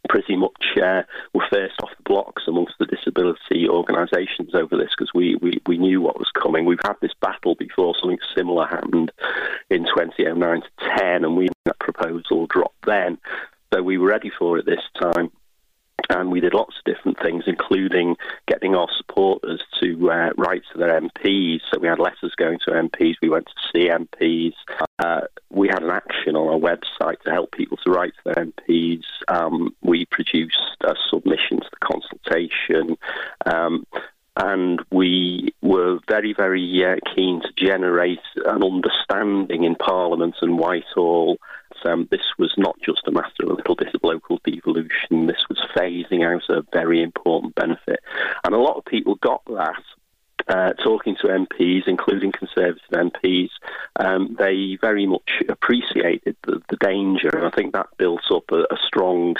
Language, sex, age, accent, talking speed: English, male, 40-59, British, 170 wpm